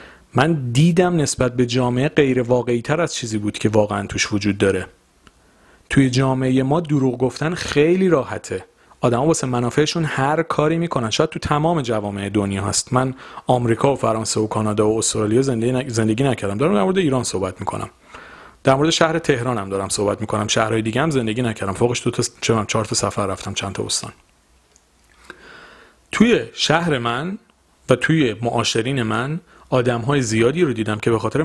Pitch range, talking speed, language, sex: 110-145 Hz, 175 wpm, Persian, male